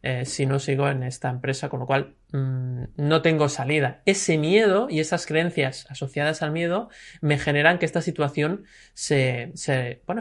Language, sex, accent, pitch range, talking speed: Spanish, male, Spanish, 140-180 Hz, 160 wpm